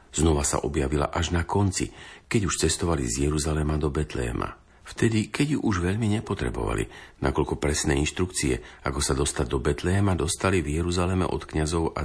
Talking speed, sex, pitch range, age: 165 wpm, male, 70-90 Hz, 50-69